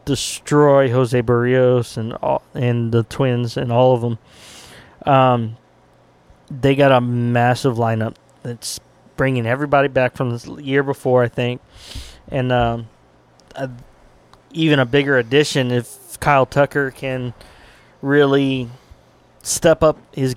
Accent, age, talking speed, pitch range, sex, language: American, 20-39, 125 wpm, 125-140 Hz, male, English